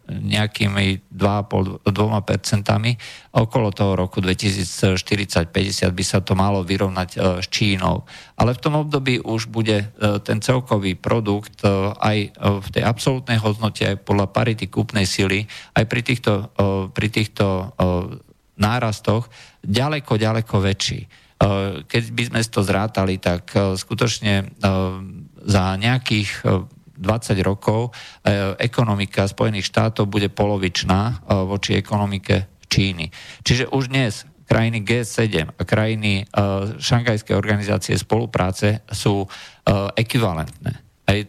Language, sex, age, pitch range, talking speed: Slovak, male, 50-69, 95-115 Hz, 125 wpm